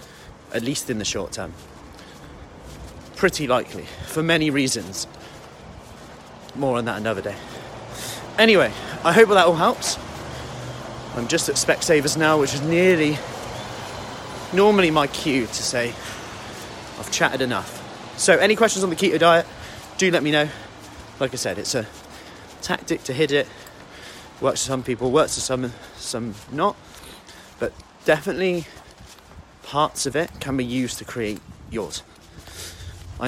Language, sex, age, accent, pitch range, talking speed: English, male, 30-49, British, 95-135 Hz, 140 wpm